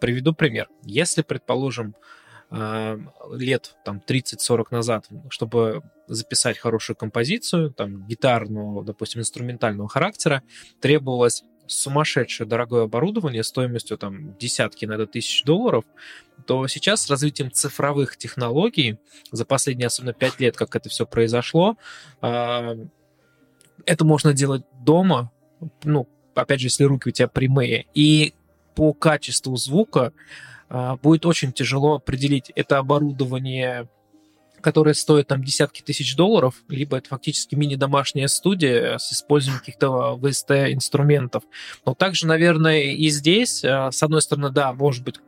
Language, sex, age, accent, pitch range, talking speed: Russian, male, 20-39, native, 120-155 Hz, 120 wpm